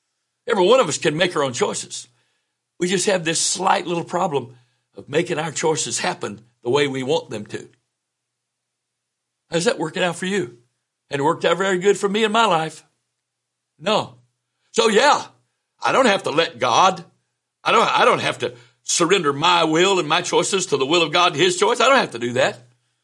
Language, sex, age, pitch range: English, male, 60-79, 125-190 Hz